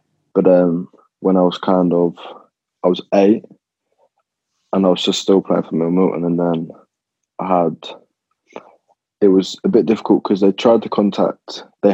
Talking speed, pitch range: 165 wpm, 85-95 Hz